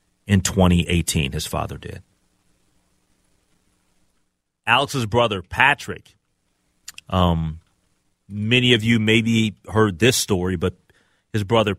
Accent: American